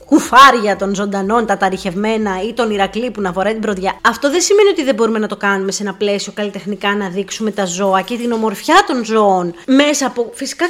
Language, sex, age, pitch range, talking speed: Greek, female, 20-39, 200-270 Hz, 215 wpm